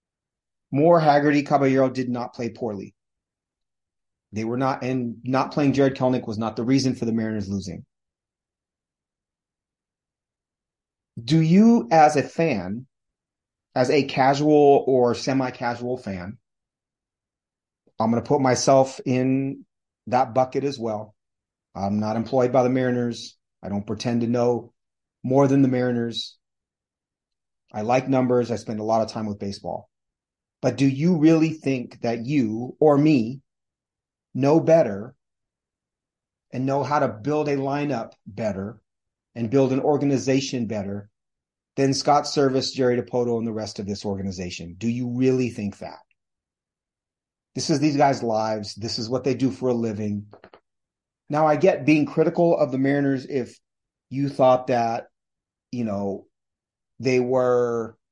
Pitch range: 110-135 Hz